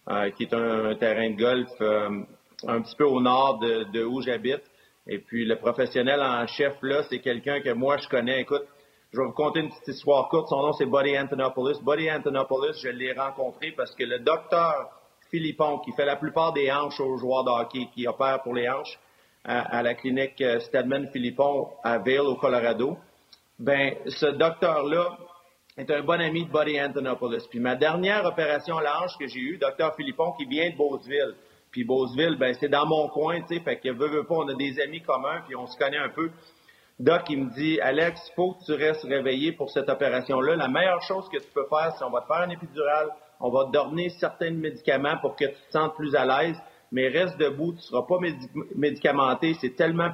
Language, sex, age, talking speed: French, male, 40-59, 215 wpm